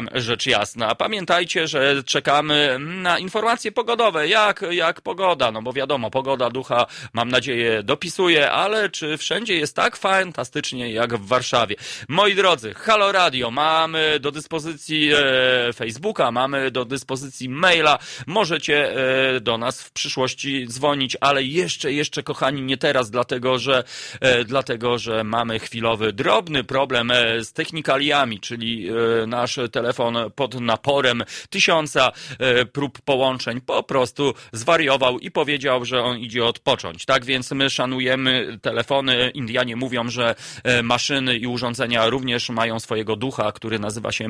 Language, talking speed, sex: Polish, 140 wpm, male